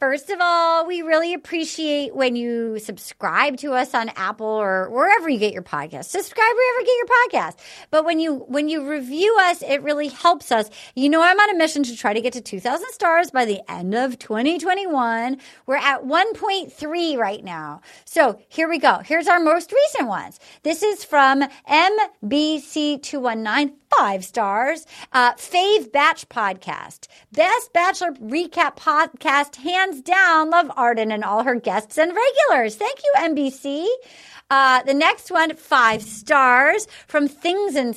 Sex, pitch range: female, 240-325 Hz